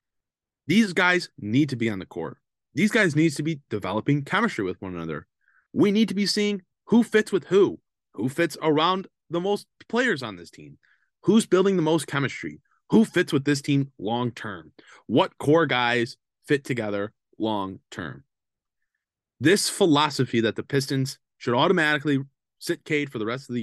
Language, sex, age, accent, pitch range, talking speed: English, male, 20-39, American, 115-155 Hz, 170 wpm